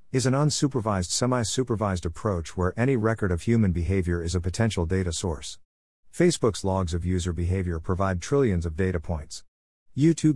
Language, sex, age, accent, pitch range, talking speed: English, male, 50-69, American, 85-120 Hz, 160 wpm